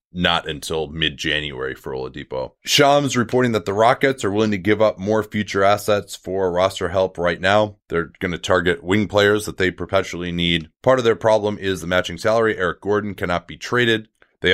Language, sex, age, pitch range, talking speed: English, male, 30-49, 85-105 Hz, 195 wpm